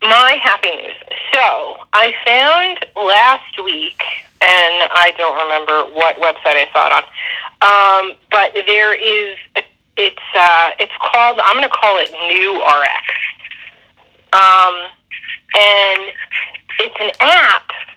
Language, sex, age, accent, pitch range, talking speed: English, female, 30-49, American, 165-225 Hz, 125 wpm